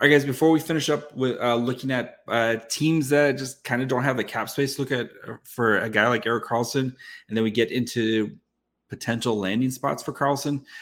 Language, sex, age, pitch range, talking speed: English, male, 30-49, 115-140 Hz, 220 wpm